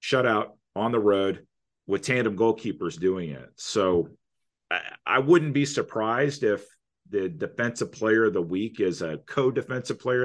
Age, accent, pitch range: 40-59, American, 85-110 Hz